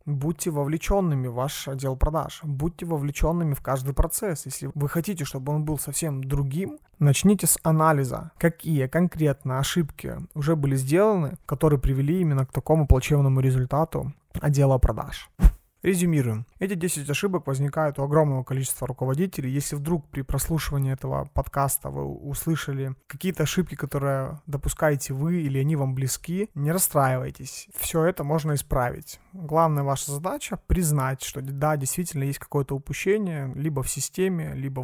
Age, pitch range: 30-49, 135-160 Hz